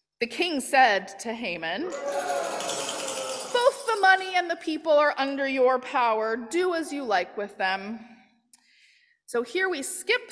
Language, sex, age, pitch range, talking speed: English, female, 30-49, 240-385 Hz, 145 wpm